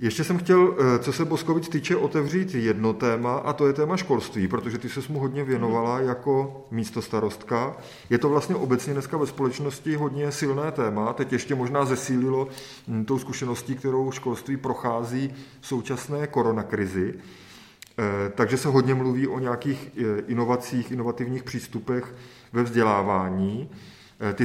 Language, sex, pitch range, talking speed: Czech, male, 120-140 Hz, 140 wpm